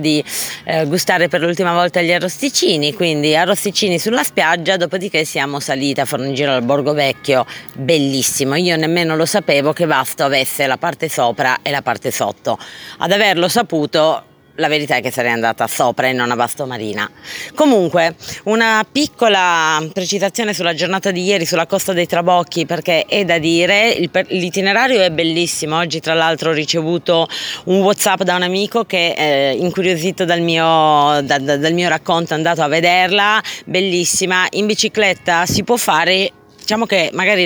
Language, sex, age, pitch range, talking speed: Italian, female, 30-49, 150-185 Hz, 155 wpm